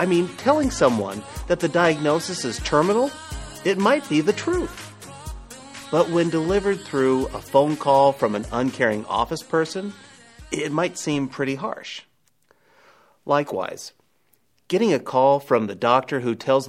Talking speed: 145 wpm